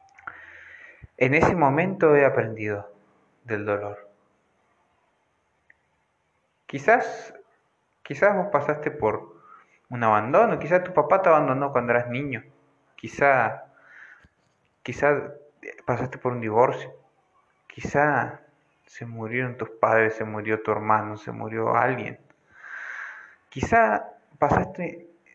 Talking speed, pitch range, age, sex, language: 100 wpm, 110-150 Hz, 30-49, male, Spanish